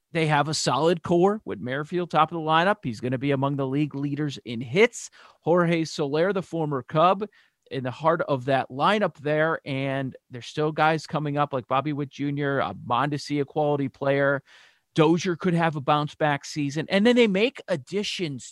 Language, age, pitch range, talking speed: English, 40-59, 135-195 Hz, 195 wpm